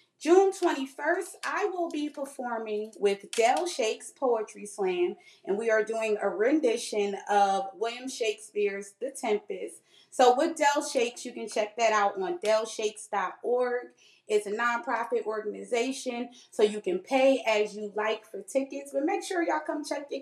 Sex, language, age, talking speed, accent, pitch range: female, English, 30-49, 155 wpm, American, 215-320 Hz